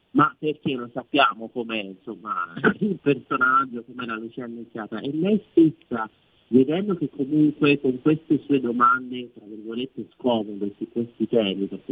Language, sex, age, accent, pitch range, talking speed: Italian, male, 40-59, native, 110-130 Hz, 140 wpm